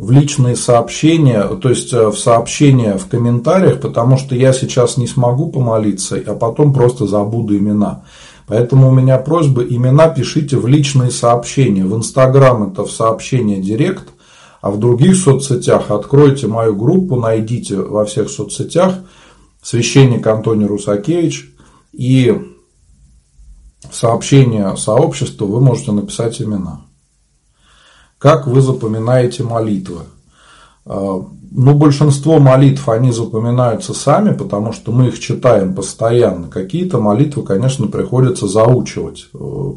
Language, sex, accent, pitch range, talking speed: Russian, male, native, 105-135 Hz, 120 wpm